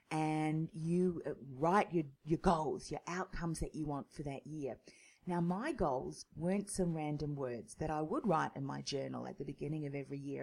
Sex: female